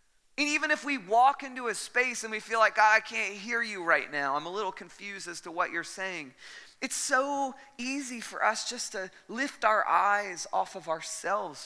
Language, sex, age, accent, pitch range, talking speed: English, male, 30-49, American, 155-210 Hz, 210 wpm